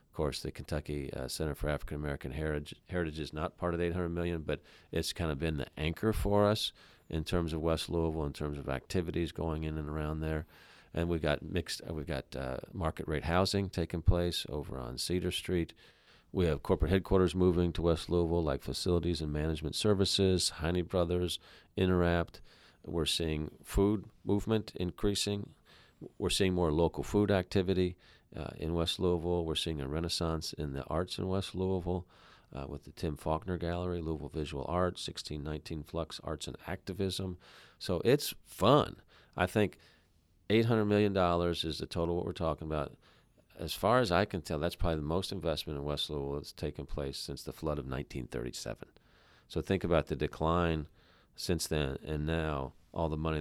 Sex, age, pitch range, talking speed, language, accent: male, 40-59, 75-90 Hz, 180 wpm, English, American